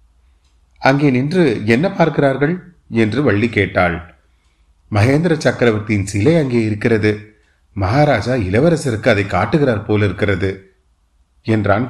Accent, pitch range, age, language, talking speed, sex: native, 85-120 Hz, 30-49, Tamil, 90 wpm, male